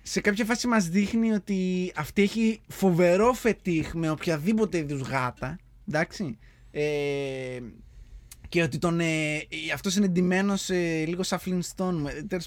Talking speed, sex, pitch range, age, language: 125 wpm, male, 155-200 Hz, 20-39, Greek